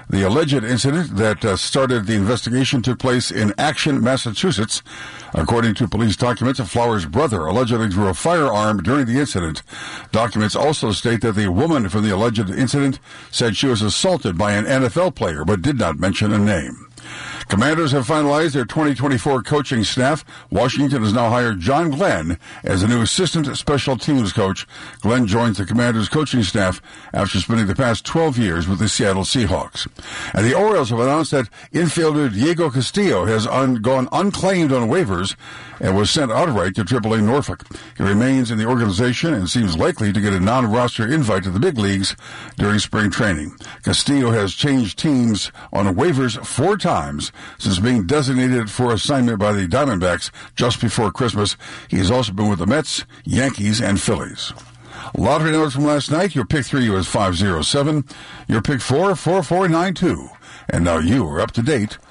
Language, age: English, 60-79